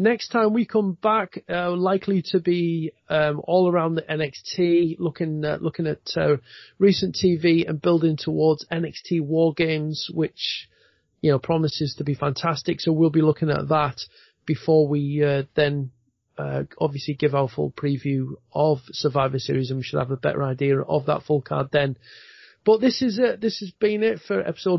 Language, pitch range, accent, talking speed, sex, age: English, 145-175 Hz, British, 180 wpm, male, 40-59